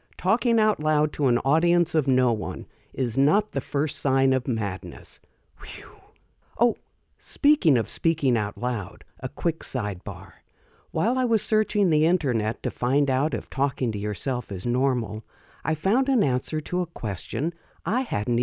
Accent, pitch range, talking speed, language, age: American, 110-160 Hz, 160 wpm, English, 60-79